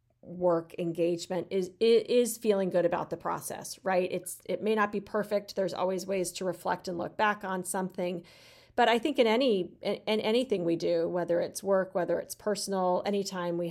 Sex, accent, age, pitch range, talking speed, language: female, American, 40-59, 175-210 Hz, 195 wpm, English